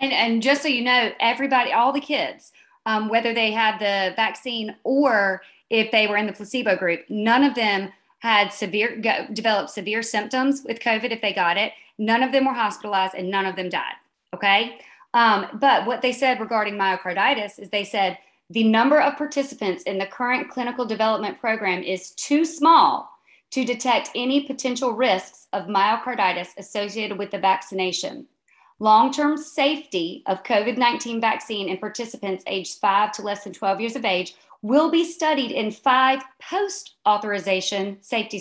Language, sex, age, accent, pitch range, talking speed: English, female, 40-59, American, 195-255 Hz, 165 wpm